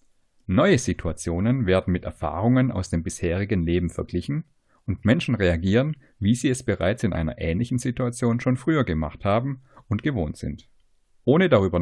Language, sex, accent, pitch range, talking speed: German, male, German, 90-125 Hz, 150 wpm